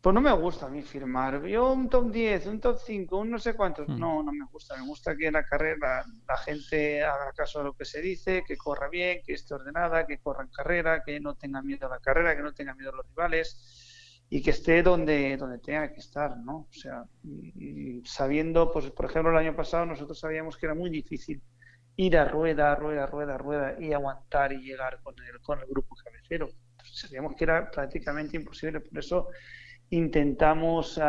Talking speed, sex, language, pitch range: 215 wpm, male, Spanish, 135-165 Hz